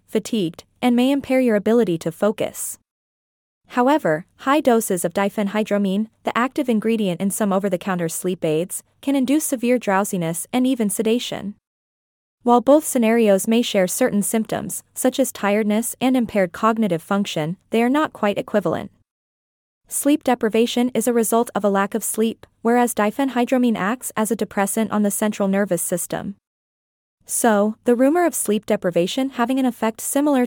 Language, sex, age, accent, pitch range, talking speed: English, female, 20-39, American, 200-245 Hz, 155 wpm